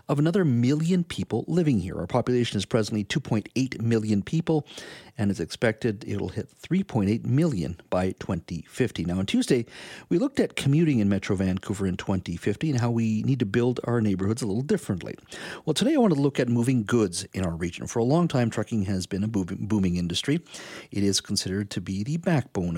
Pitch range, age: 95-125 Hz, 50-69